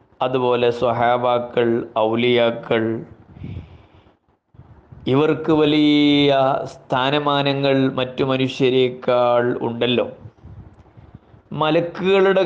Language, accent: Malayalam, native